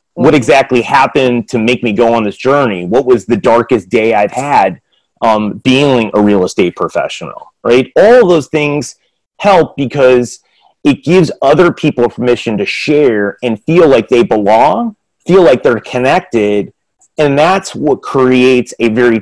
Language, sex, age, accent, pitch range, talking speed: English, male, 30-49, American, 115-150 Hz, 160 wpm